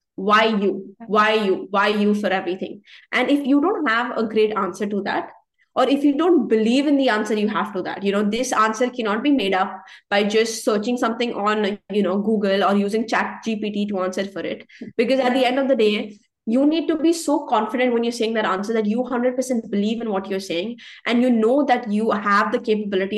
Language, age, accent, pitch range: English, 20-39, Indian, 200-255 Hz